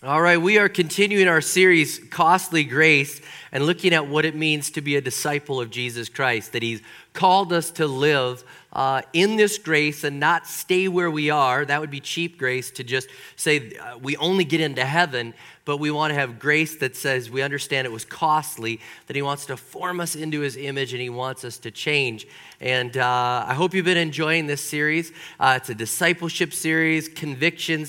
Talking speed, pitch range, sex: 200 wpm, 130-160 Hz, male